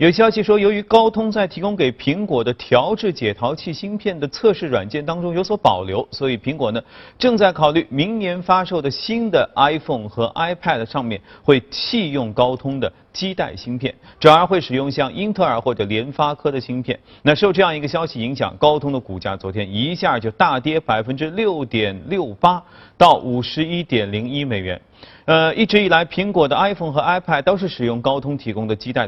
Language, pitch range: Chinese, 120-180 Hz